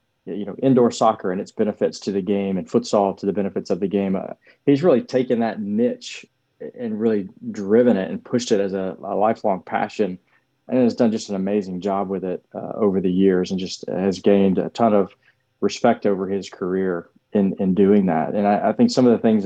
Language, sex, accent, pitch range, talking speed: English, male, American, 100-115 Hz, 220 wpm